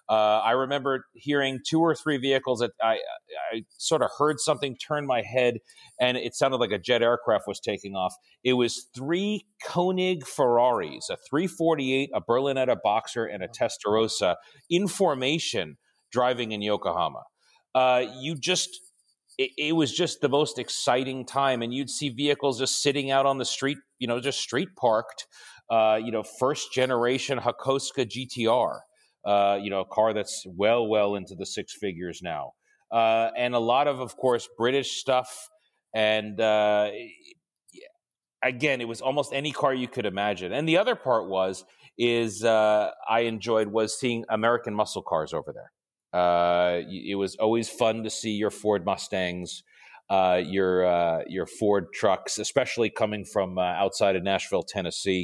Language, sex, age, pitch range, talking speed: English, male, 40-59, 105-135 Hz, 165 wpm